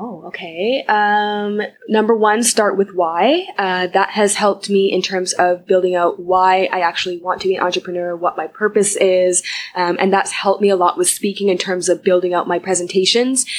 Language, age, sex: English, 20-39, female